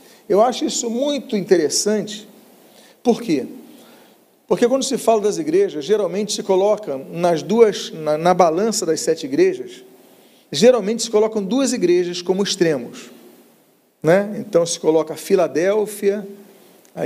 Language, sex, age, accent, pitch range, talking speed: Portuguese, male, 40-59, Brazilian, 180-245 Hz, 135 wpm